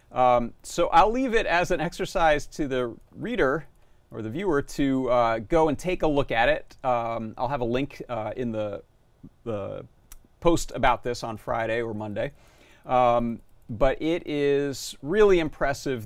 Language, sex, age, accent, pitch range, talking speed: English, male, 30-49, American, 110-135 Hz, 170 wpm